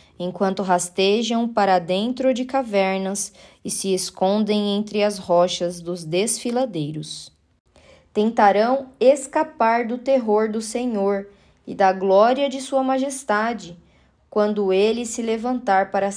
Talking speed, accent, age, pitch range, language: 115 wpm, Brazilian, 10-29, 190-225 Hz, Portuguese